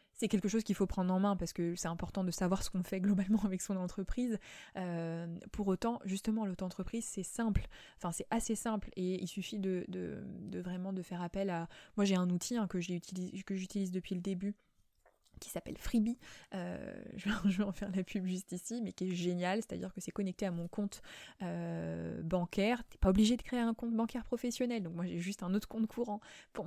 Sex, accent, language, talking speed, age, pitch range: female, French, French, 225 wpm, 20-39, 180-210 Hz